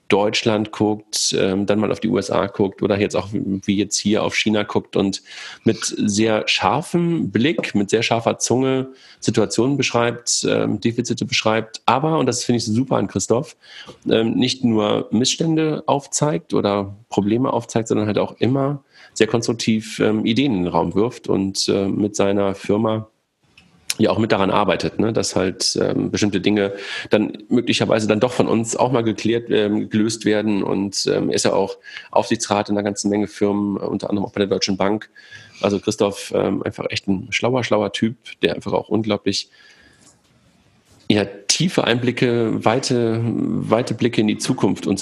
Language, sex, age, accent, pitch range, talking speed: German, male, 40-59, German, 100-120 Hz, 165 wpm